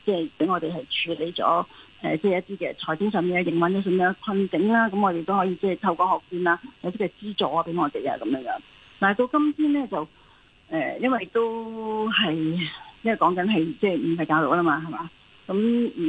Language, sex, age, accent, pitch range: Chinese, female, 40-59, native, 175-235 Hz